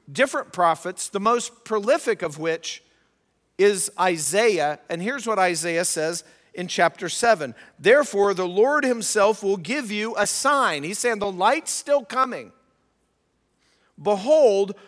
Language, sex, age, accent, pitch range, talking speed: English, male, 50-69, American, 185-245 Hz, 135 wpm